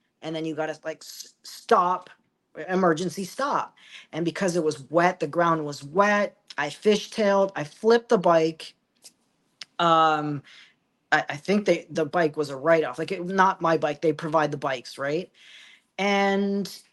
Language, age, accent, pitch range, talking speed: English, 40-59, American, 150-185 Hz, 165 wpm